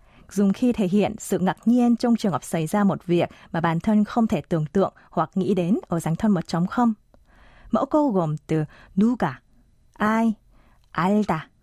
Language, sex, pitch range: Vietnamese, female, 165-230 Hz